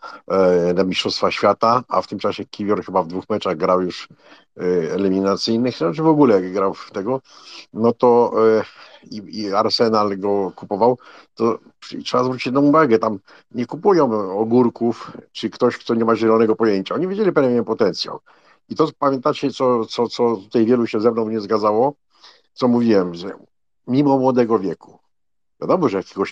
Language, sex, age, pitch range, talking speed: Polish, male, 50-69, 105-140 Hz, 160 wpm